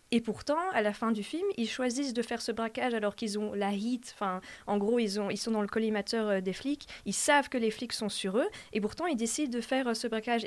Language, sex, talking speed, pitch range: French, female, 265 wpm, 205-255 Hz